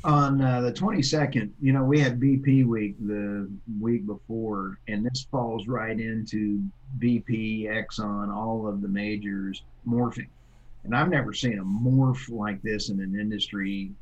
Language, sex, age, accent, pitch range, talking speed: English, male, 50-69, American, 100-125 Hz, 155 wpm